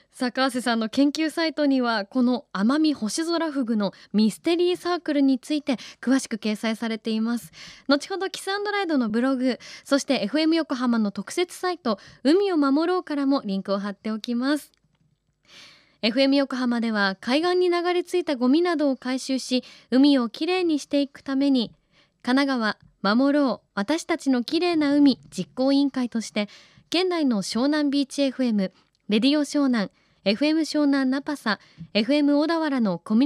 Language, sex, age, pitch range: Japanese, female, 20-39, 215-300 Hz